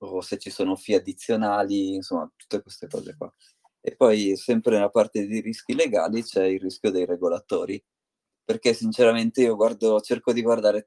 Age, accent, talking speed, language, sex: 30-49, native, 170 wpm, Italian, male